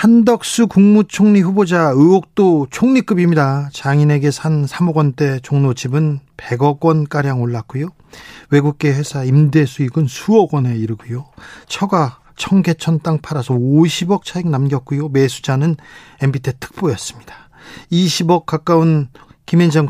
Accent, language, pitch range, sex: native, Korean, 140-170 Hz, male